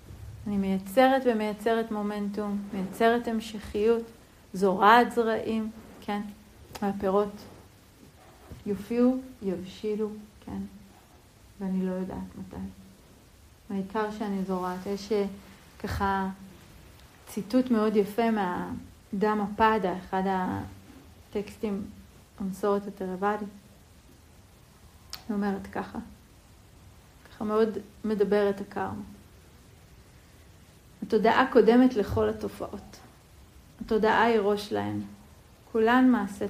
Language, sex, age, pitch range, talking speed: Hebrew, female, 40-59, 190-225 Hz, 80 wpm